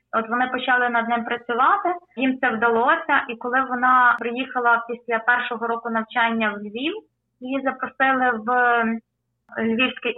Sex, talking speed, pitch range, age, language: female, 135 wpm, 225-250 Hz, 20-39, English